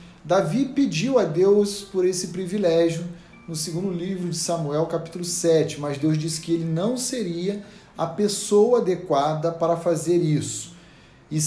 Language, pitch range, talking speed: Portuguese, 165-220 Hz, 145 wpm